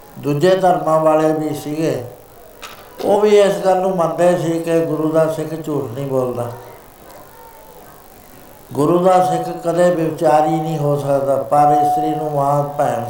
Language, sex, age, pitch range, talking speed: Punjabi, male, 60-79, 135-170 Hz, 150 wpm